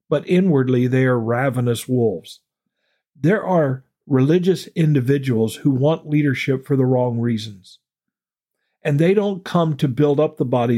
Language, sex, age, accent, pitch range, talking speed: English, male, 50-69, American, 120-150 Hz, 145 wpm